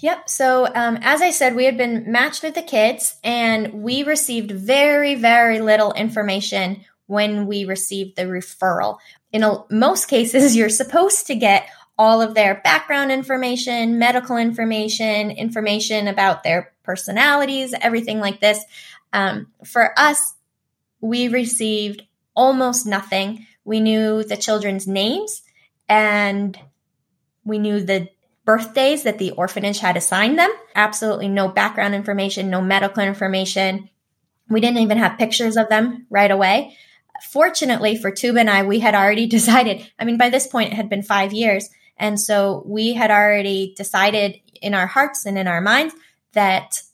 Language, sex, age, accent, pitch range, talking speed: English, female, 10-29, American, 200-240 Hz, 150 wpm